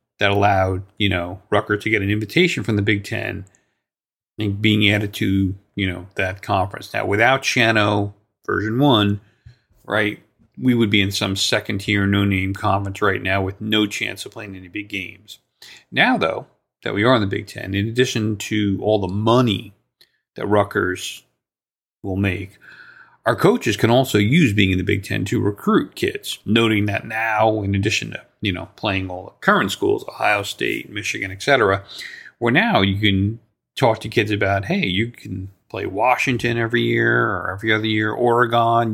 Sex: male